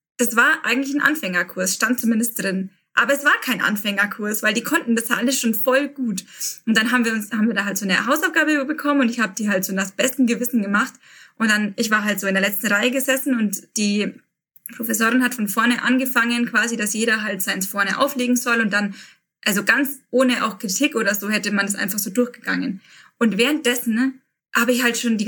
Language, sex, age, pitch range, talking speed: German, female, 20-39, 210-250 Hz, 220 wpm